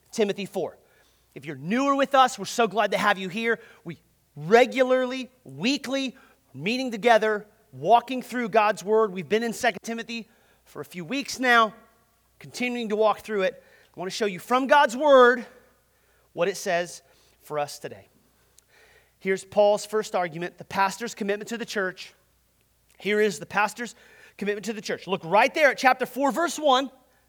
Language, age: English, 30-49